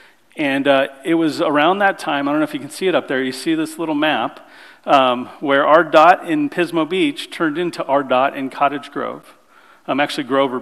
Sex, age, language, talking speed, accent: male, 40-59, English, 220 wpm, American